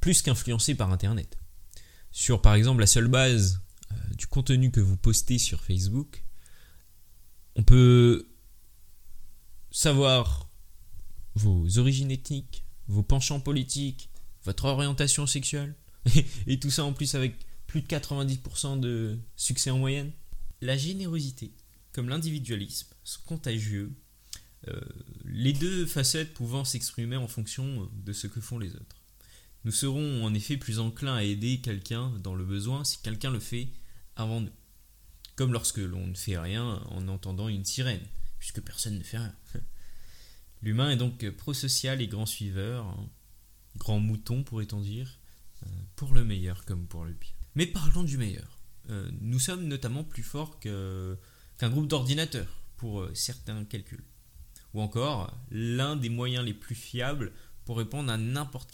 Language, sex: French, male